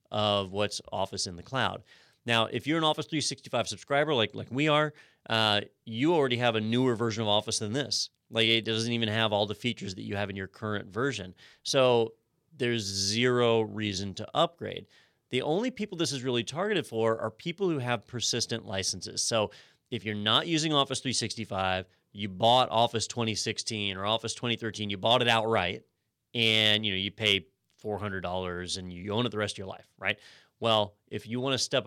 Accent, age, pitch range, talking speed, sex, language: American, 30-49, 100-120 Hz, 190 wpm, male, English